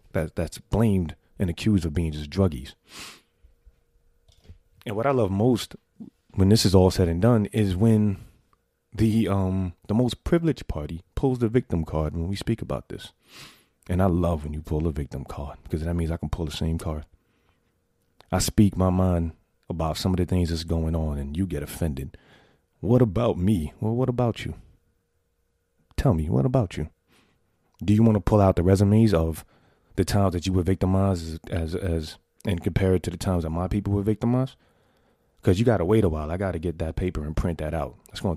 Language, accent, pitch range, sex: English, American, 80-105 Hz, male